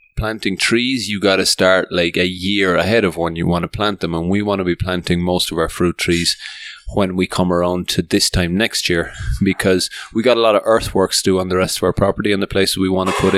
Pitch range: 90-105 Hz